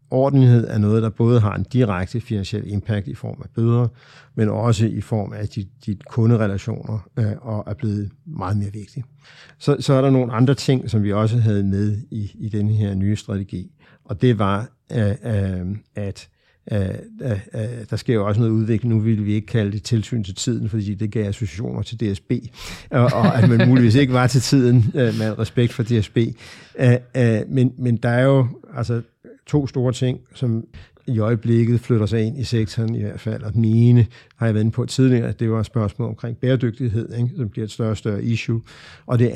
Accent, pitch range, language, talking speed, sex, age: native, 105-120 Hz, Danish, 205 wpm, male, 60-79